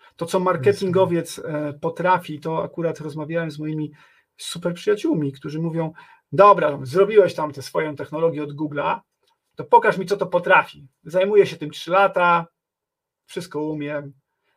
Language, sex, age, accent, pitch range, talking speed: Polish, male, 40-59, native, 150-230 Hz, 140 wpm